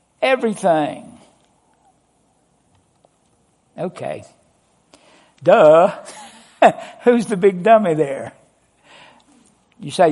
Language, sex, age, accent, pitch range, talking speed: English, male, 60-79, American, 135-185 Hz, 60 wpm